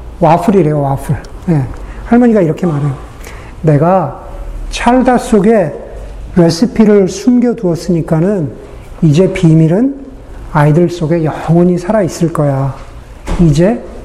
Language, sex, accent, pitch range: Korean, male, native, 150-195 Hz